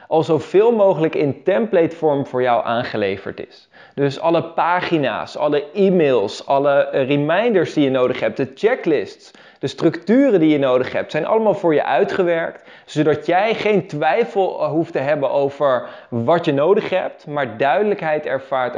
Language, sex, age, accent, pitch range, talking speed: Dutch, male, 20-39, Dutch, 135-175 Hz, 155 wpm